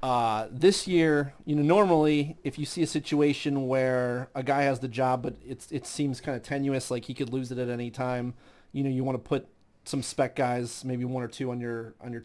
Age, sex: 30-49, male